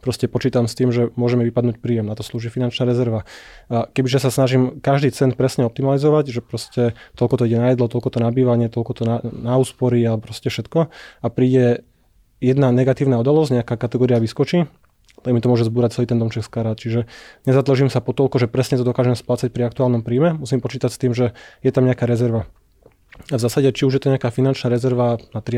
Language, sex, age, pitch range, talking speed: Slovak, male, 20-39, 120-130 Hz, 215 wpm